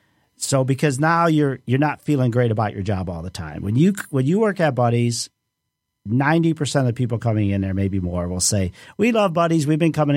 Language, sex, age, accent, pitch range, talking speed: English, male, 50-69, American, 110-150 Hz, 240 wpm